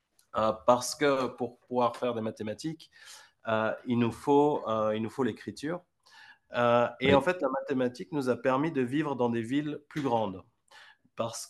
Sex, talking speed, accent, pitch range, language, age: male, 175 wpm, French, 110-135 Hz, French, 30-49